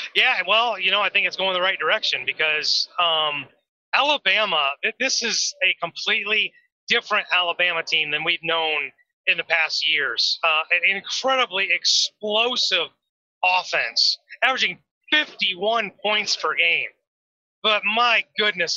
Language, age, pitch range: English, 30-49, 180-230 Hz